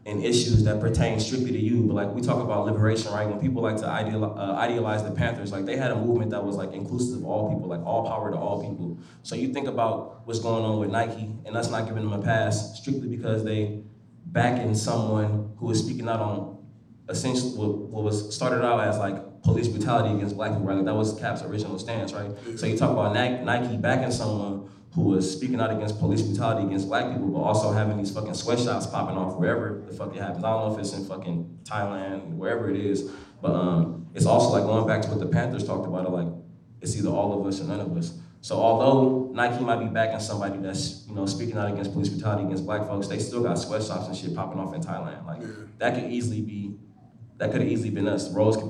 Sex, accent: male, American